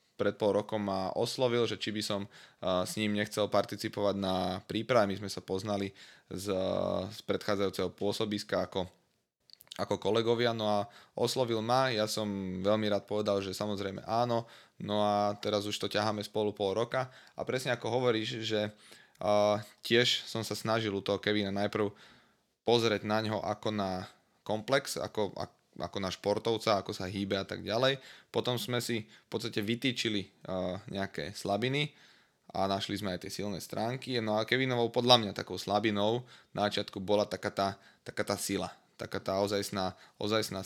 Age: 20-39